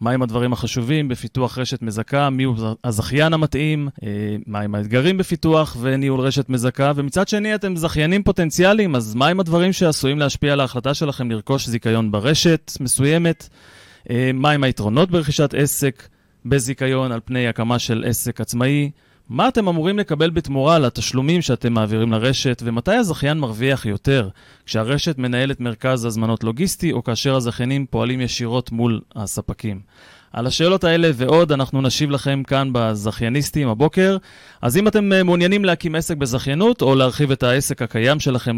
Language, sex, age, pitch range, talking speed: Hebrew, male, 30-49, 120-155 Hz, 145 wpm